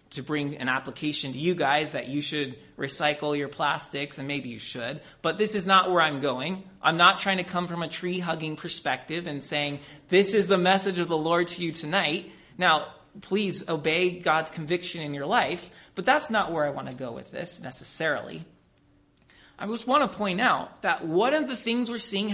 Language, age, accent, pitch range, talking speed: English, 30-49, American, 150-205 Hz, 205 wpm